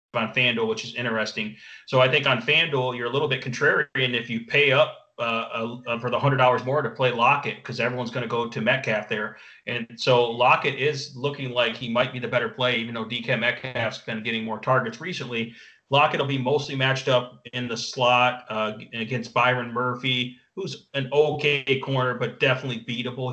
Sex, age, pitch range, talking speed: male, 30-49, 115-130 Hz, 200 wpm